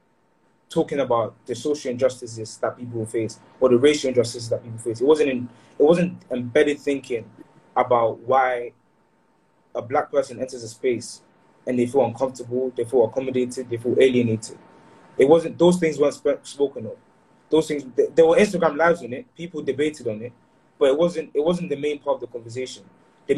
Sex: male